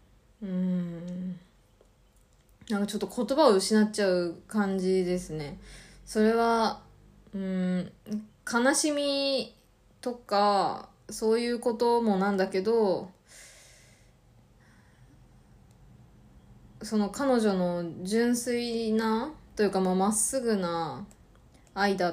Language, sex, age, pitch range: Japanese, female, 20-39, 180-220 Hz